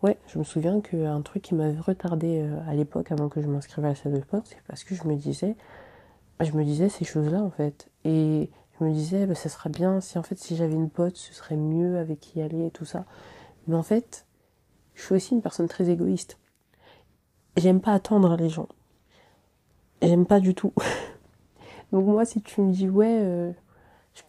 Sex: female